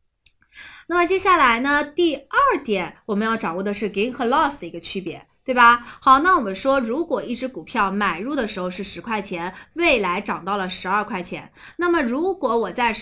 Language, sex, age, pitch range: Chinese, female, 30-49, 185-270 Hz